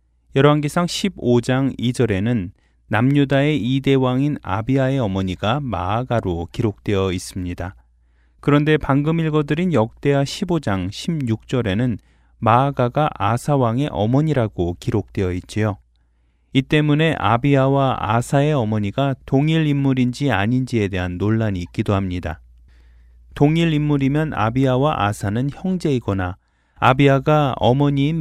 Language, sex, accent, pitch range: Korean, male, native, 95-140 Hz